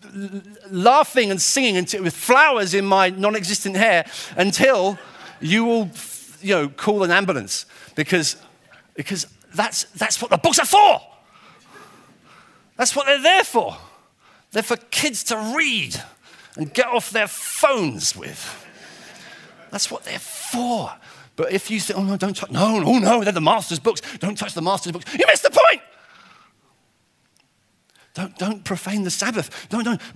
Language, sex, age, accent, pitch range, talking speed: English, male, 40-59, British, 140-230 Hz, 155 wpm